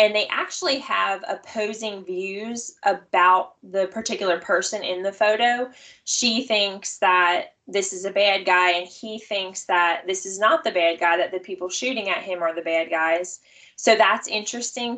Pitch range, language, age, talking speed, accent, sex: 180-215 Hz, English, 10-29, 175 wpm, American, female